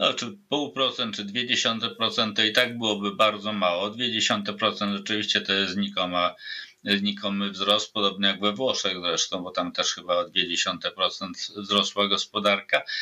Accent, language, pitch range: native, Polish, 100-115 Hz